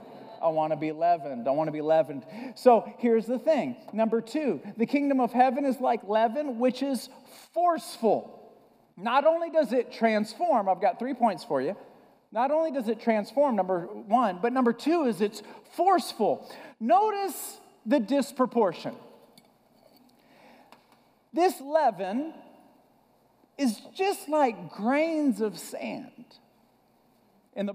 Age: 40-59